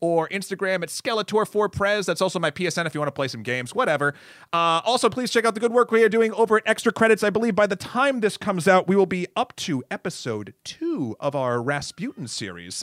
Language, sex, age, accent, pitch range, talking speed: English, male, 30-49, American, 150-205 Hz, 235 wpm